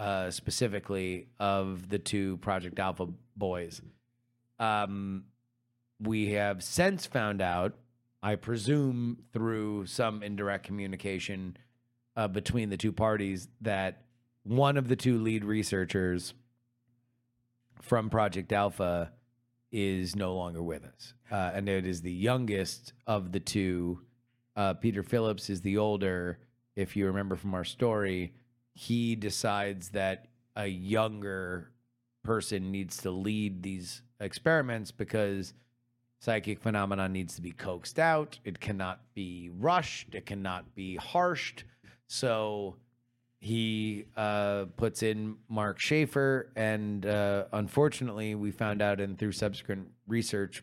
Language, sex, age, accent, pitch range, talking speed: English, male, 30-49, American, 95-120 Hz, 125 wpm